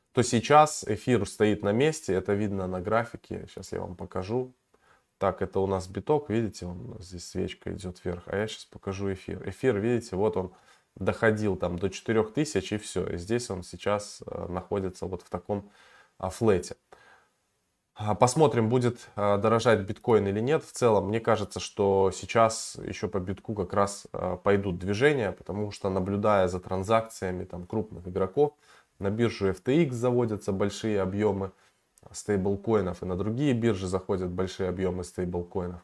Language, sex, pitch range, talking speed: Russian, male, 95-110 Hz, 150 wpm